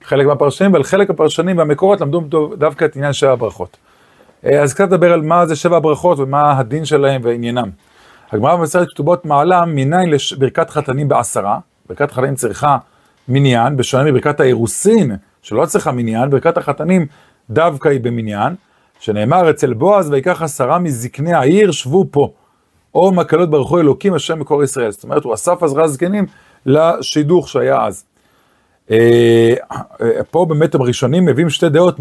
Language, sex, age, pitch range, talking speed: Hebrew, male, 40-59, 135-175 Hz, 150 wpm